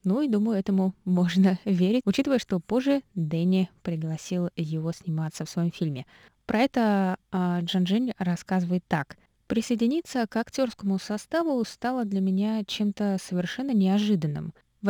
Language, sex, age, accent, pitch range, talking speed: Russian, female, 20-39, native, 175-215 Hz, 135 wpm